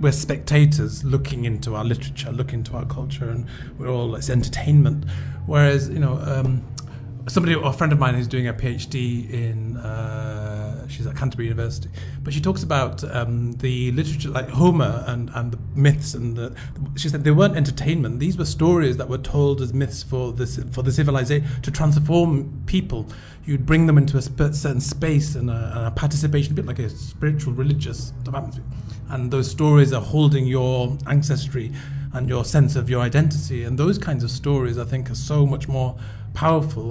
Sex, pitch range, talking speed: male, 120-140 Hz, 180 wpm